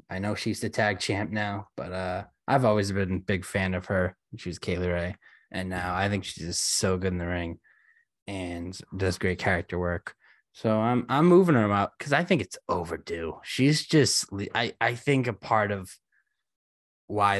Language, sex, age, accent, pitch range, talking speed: English, male, 20-39, American, 95-120 Hz, 195 wpm